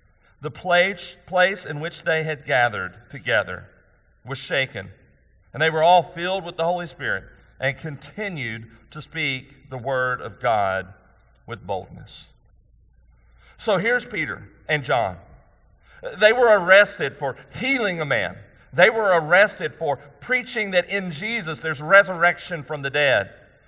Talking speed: 135 wpm